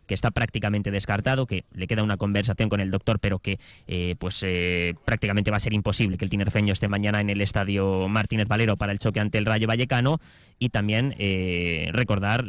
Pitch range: 105-130 Hz